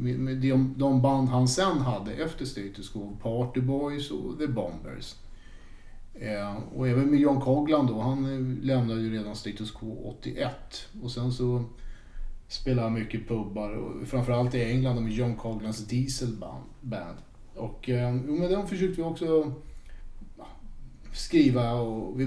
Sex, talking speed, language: male, 135 wpm, Swedish